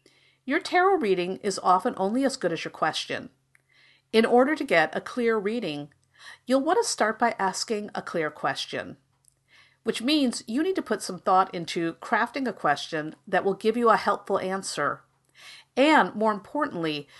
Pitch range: 170-245 Hz